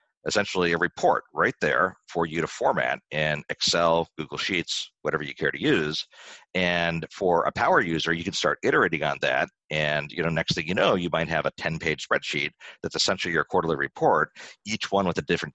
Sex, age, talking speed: male, 50-69, 200 wpm